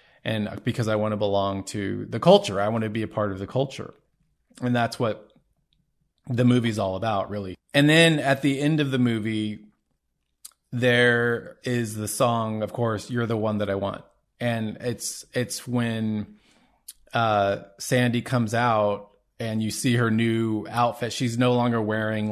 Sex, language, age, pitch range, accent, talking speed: male, English, 20-39, 105-125 Hz, American, 170 wpm